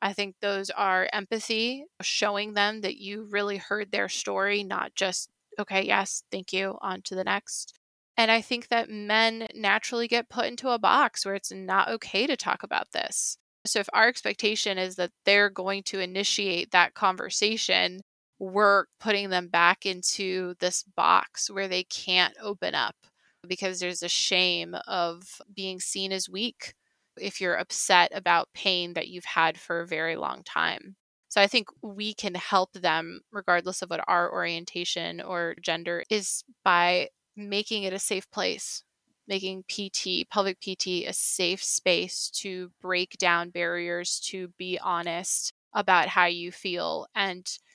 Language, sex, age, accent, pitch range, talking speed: English, female, 20-39, American, 180-205 Hz, 160 wpm